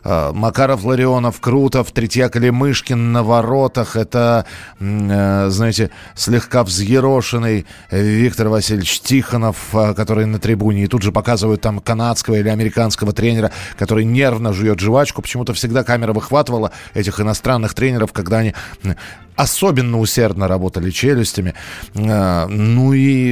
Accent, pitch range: native, 105-135 Hz